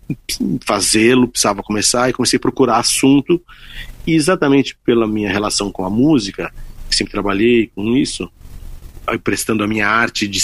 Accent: Brazilian